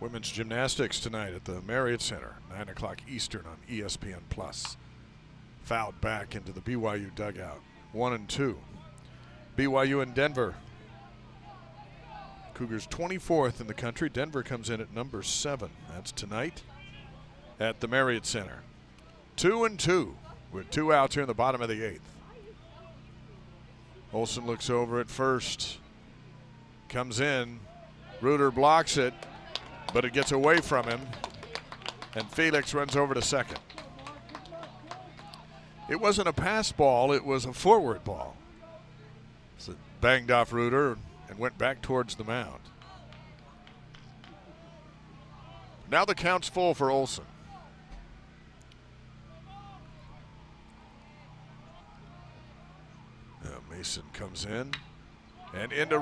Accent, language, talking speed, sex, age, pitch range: American, English, 115 wpm, male, 50-69, 115-145 Hz